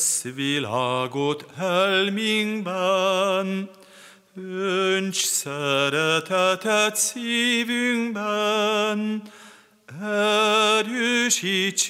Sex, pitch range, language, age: male, 145-205 Hz, Hungarian, 40-59